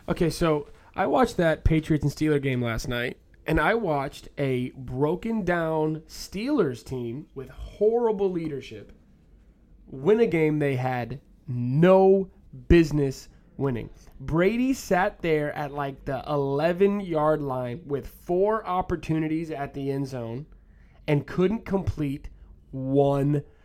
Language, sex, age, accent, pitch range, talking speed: English, male, 20-39, American, 140-185 Hz, 120 wpm